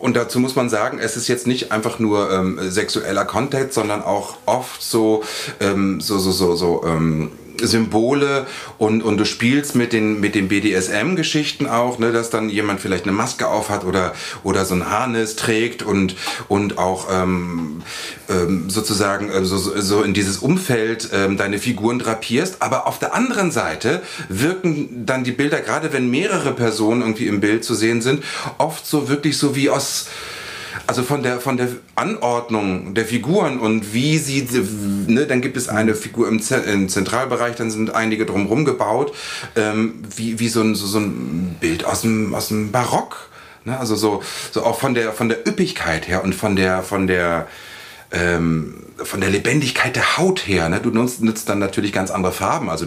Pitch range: 100-125 Hz